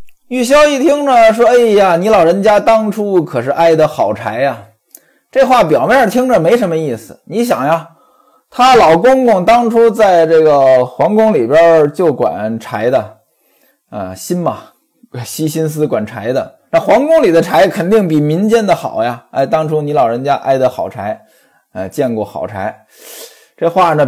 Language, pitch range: Chinese, 150-250 Hz